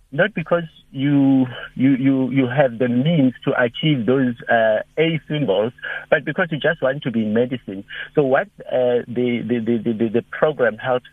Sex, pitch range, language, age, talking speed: male, 120-150 Hz, English, 60-79, 185 wpm